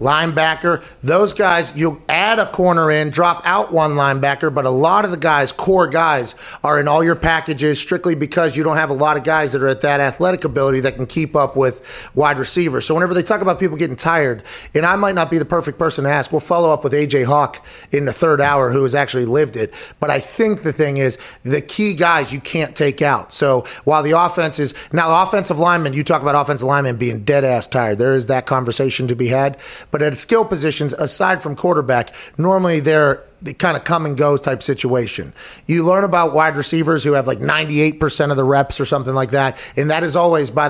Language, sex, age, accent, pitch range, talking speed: English, male, 30-49, American, 135-165 Hz, 230 wpm